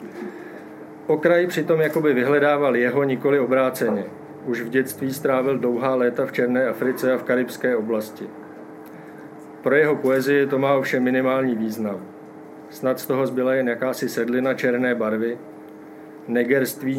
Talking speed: 135 wpm